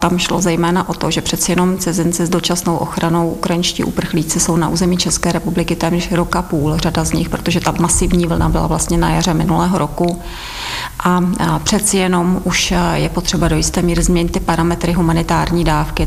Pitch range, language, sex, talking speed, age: 160-175 Hz, Czech, female, 185 wpm, 30-49